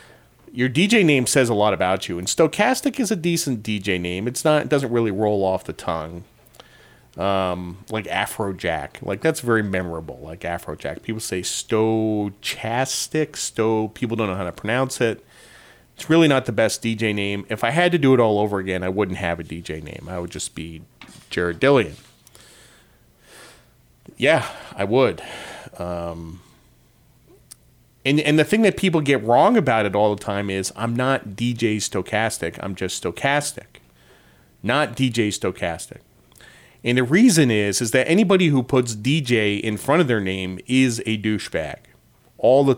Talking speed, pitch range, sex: 170 wpm, 100-130 Hz, male